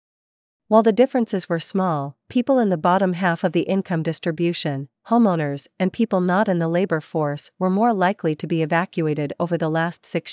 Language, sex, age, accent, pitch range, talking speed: English, female, 40-59, American, 165-195 Hz, 185 wpm